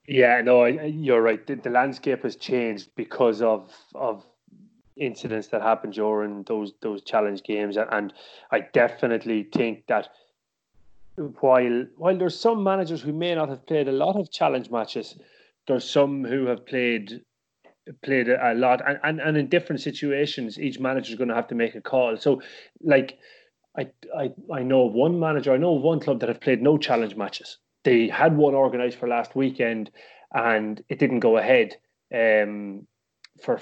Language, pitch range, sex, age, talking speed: English, 110-135 Hz, male, 30-49, 175 wpm